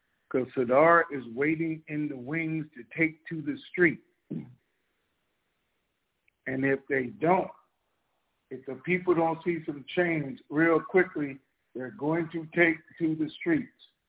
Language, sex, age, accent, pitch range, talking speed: English, male, 50-69, American, 135-160 Hz, 135 wpm